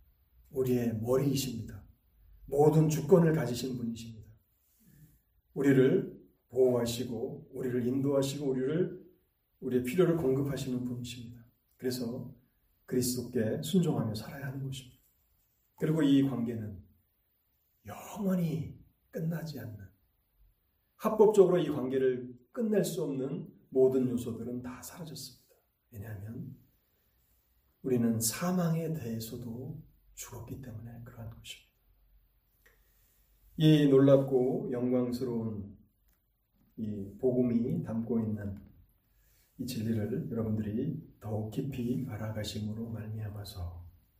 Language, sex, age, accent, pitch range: Korean, male, 40-59, native, 110-135 Hz